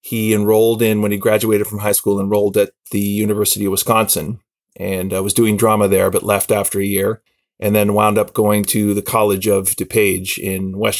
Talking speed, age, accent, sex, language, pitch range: 205 wpm, 30-49, American, male, English, 100-115 Hz